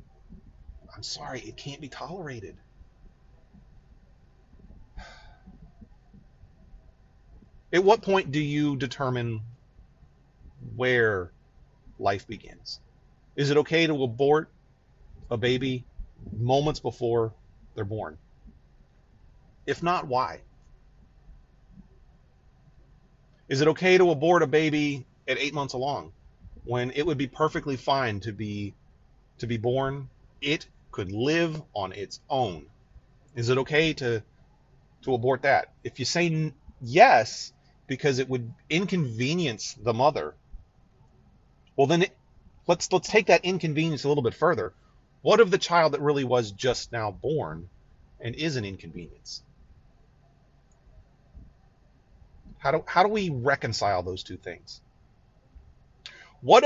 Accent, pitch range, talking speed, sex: American, 115-155 Hz, 115 wpm, male